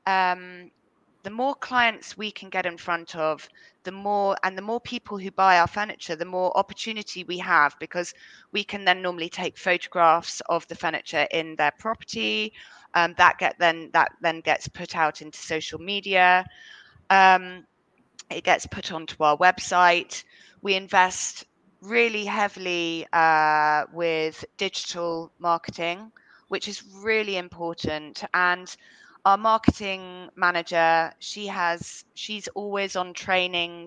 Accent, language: British, English